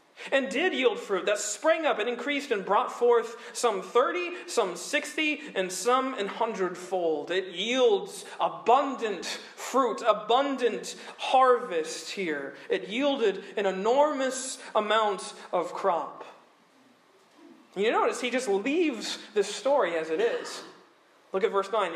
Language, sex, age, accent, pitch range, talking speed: English, male, 40-59, American, 205-280 Hz, 130 wpm